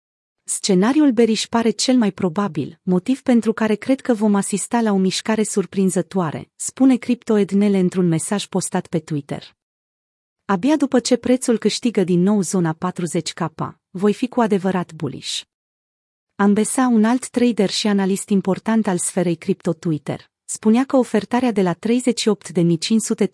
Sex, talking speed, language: female, 140 wpm, Romanian